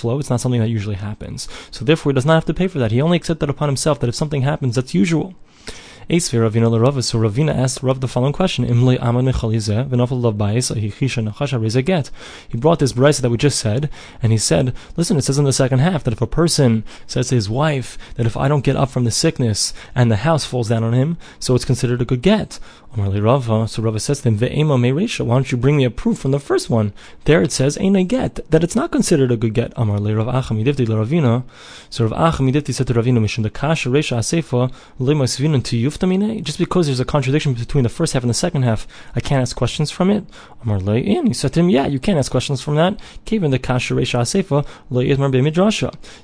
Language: English